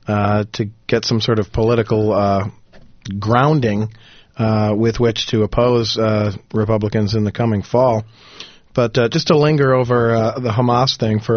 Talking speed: 165 wpm